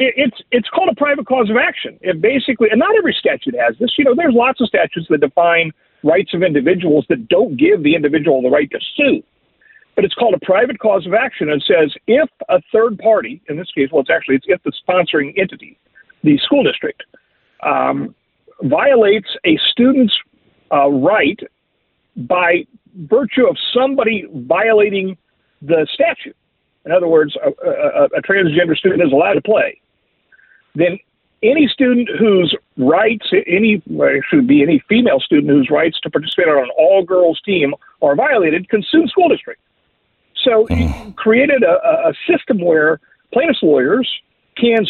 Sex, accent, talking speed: male, American, 165 wpm